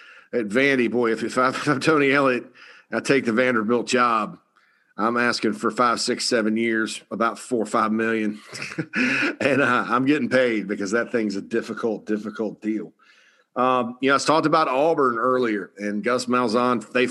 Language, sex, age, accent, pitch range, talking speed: English, male, 40-59, American, 110-125 Hz, 170 wpm